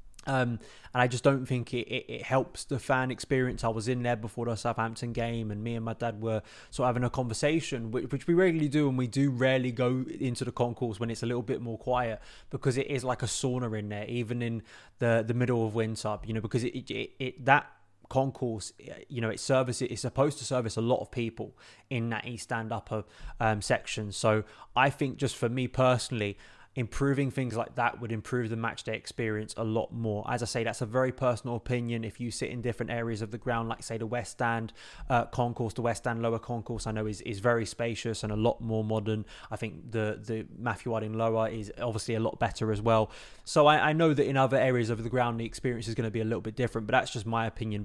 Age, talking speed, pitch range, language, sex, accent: 20-39, 245 wpm, 110-125 Hz, English, male, British